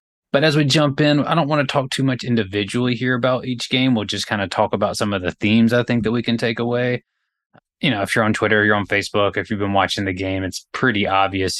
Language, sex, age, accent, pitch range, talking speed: English, male, 20-39, American, 100-125 Hz, 270 wpm